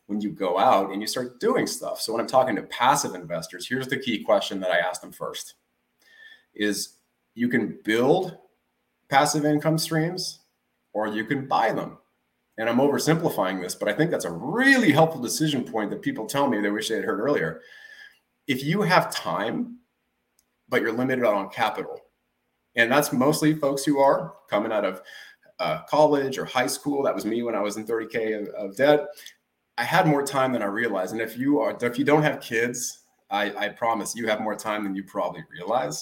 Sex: male